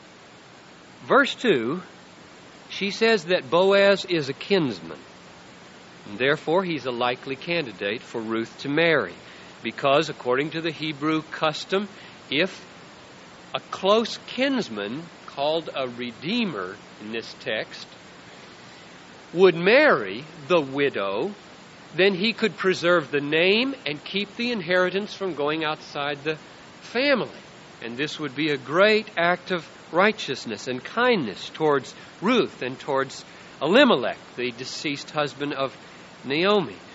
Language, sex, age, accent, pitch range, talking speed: English, male, 50-69, American, 150-220 Hz, 120 wpm